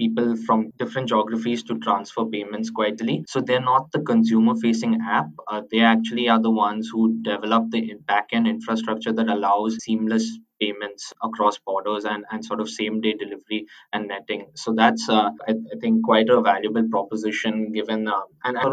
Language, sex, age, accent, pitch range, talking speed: English, male, 20-39, Indian, 105-115 Hz, 180 wpm